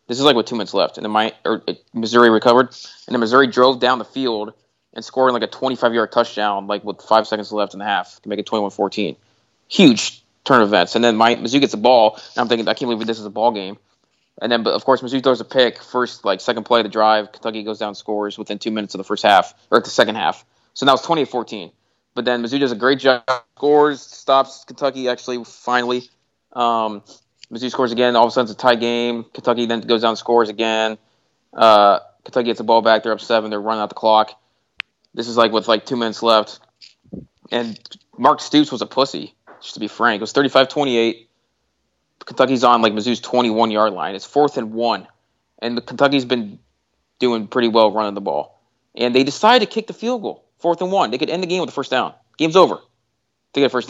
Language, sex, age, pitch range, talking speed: English, male, 20-39, 110-125 Hz, 230 wpm